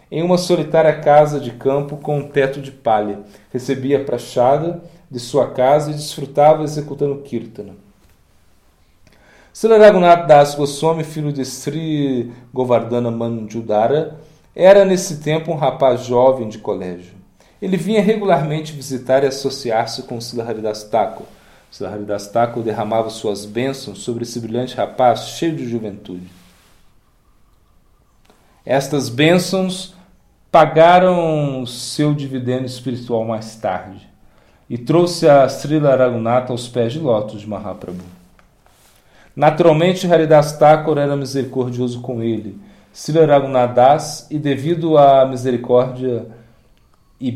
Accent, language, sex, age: Brazilian, Portuguese, male, 40-59